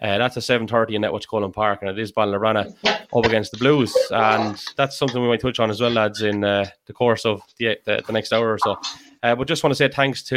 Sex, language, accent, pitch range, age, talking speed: male, English, Irish, 105-130 Hz, 20-39, 270 wpm